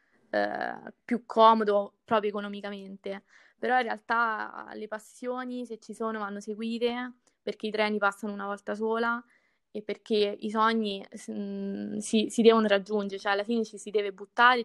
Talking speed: 155 wpm